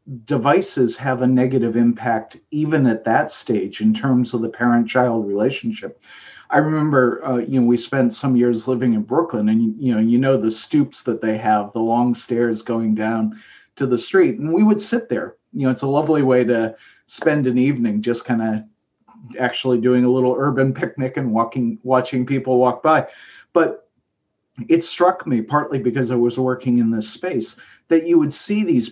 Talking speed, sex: 195 wpm, male